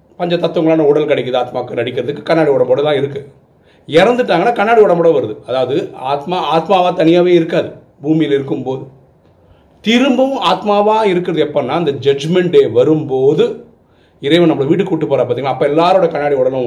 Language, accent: Tamil, native